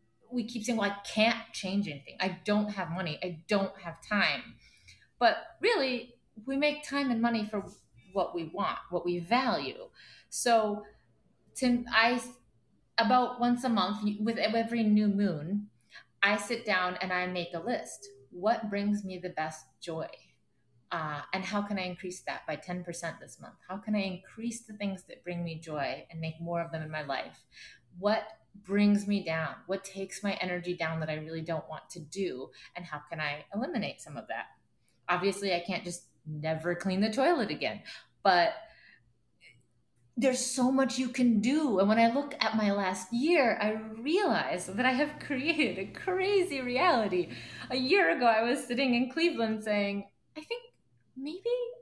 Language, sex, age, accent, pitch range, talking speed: English, female, 30-49, American, 180-245 Hz, 175 wpm